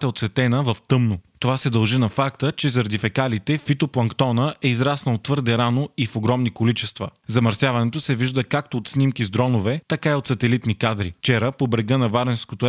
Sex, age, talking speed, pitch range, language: male, 30-49, 185 wpm, 115-135 Hz, Bulgarian